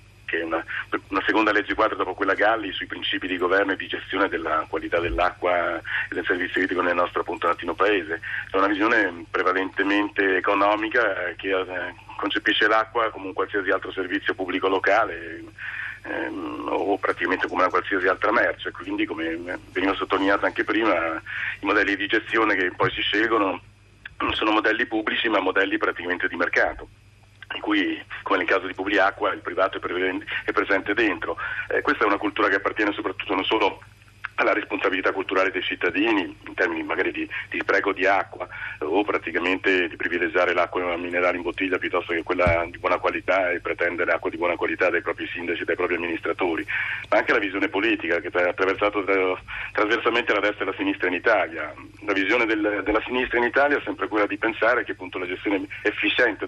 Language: Italian